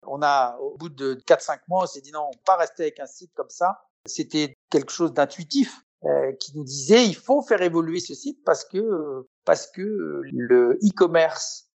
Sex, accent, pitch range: male, French, 145-210 Hz